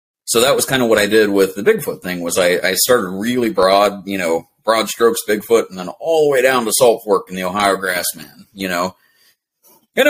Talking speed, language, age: 230 wpm, English, 30-49